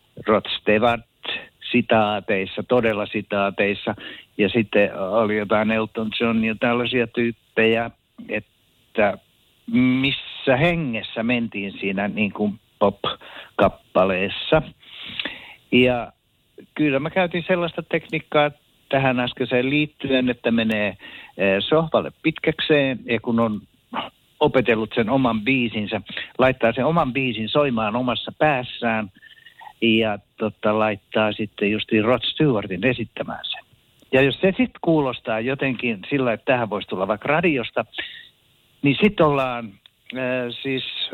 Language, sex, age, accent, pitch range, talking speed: Finnish, male, 60-79, native, 110-145 Hz, 110 wpm